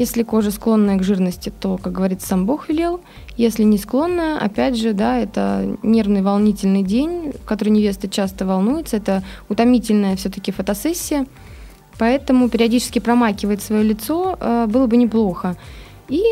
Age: 20-39